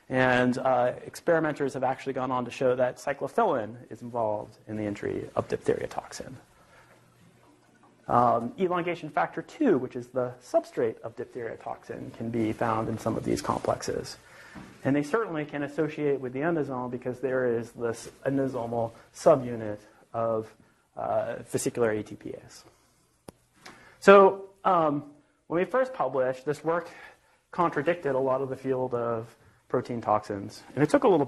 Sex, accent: male, American